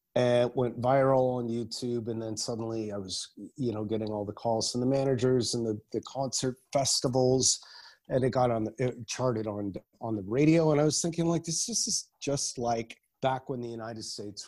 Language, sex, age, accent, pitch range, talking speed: English, male, 30-49, American, 115-145 Hz, 205 wpm